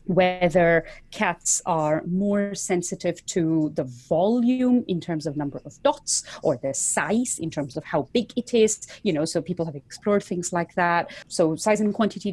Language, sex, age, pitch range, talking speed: English, female, 30-49, 170-225 Hz, 180 wpm